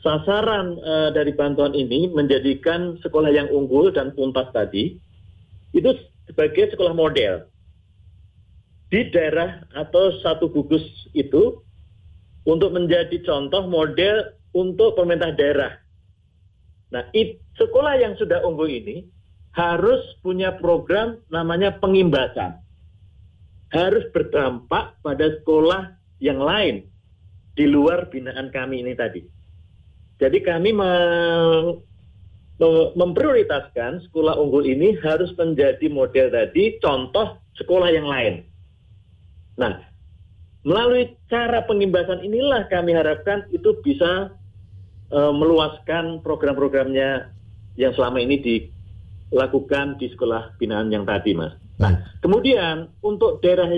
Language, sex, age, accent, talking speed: Indonesian, male, 40-59, native, 105 wpm